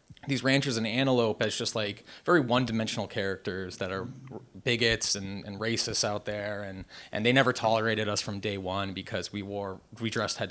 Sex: male